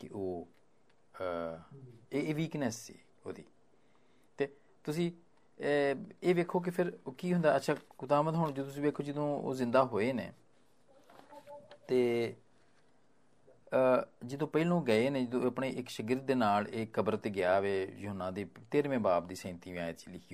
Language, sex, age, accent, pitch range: Hindi, male, 40-59, native, 100-155 Hz